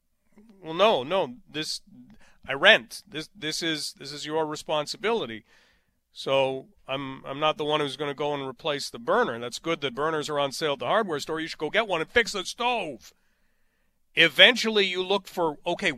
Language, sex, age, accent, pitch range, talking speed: English, male, 40-59, American, 155-205 Hz, 195 wpm